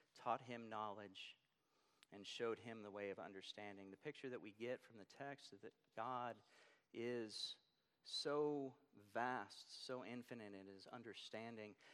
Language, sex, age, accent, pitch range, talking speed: English, male, 40-59, American, 105-130 Hz, 145 wpm